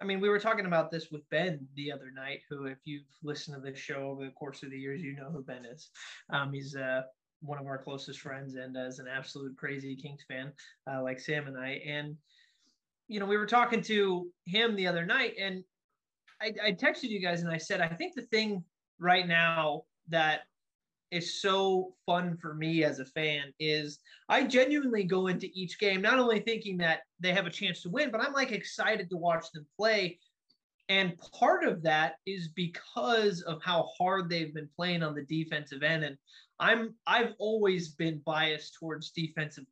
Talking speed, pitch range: 200 wpm, 150-190 Hz